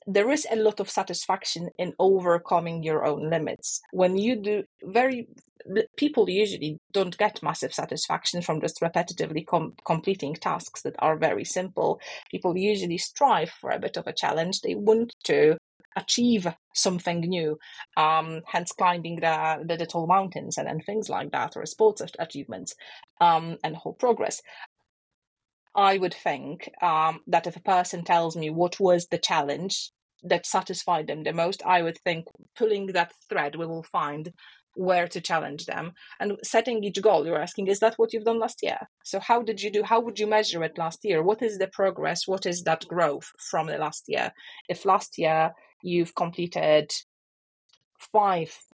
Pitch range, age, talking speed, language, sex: 165-210 Hz, 30-49, 170 wpm, English, female